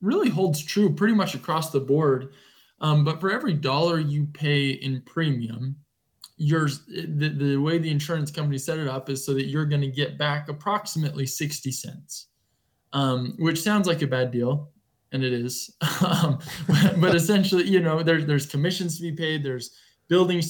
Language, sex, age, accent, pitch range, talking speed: English, male, 20-39, American, 140-170 Hz, 180 wpm